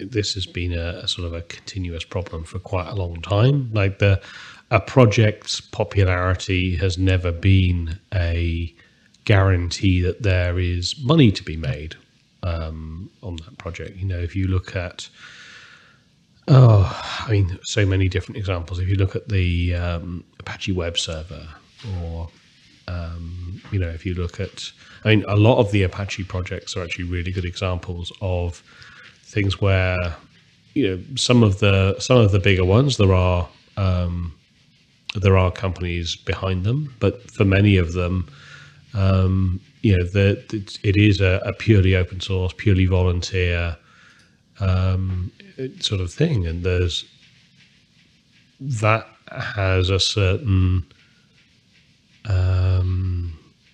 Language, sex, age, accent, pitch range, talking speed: English, male, 30-49, British, 90-105 Hz, 145 wpm